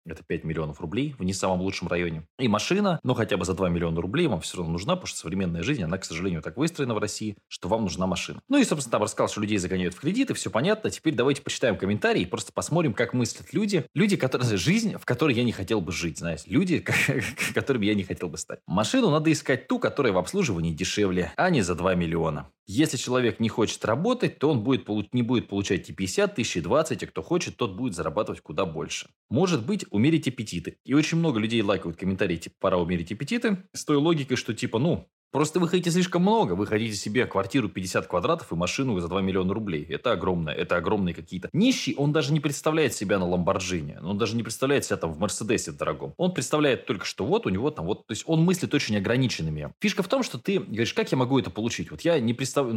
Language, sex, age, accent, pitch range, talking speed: Russian, male, 20-39, native, 95-150 Hz, 230 wpm